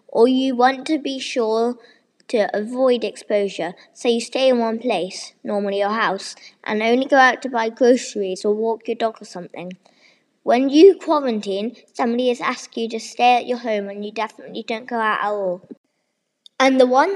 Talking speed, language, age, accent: 190 wpm, English, 10-29, British